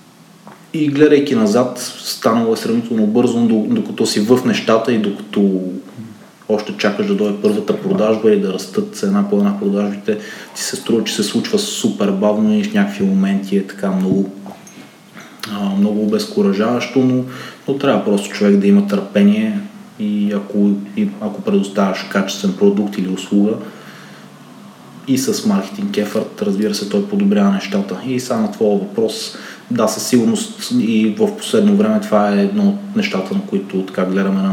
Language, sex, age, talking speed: Bulgarian, male, 20-39, 160 wpm